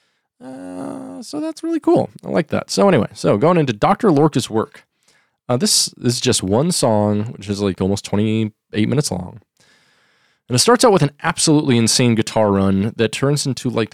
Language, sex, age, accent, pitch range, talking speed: English, male, 20-39, American, 105-145 Hz, 190 wpm